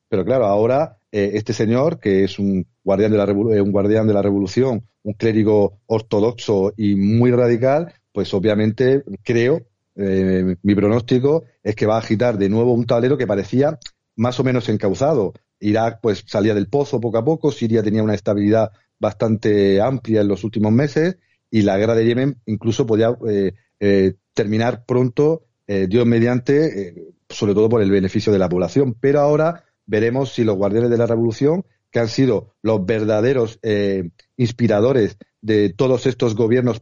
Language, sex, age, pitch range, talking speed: Spanish, male, 40-59, 105-125 Hz, 175 wpm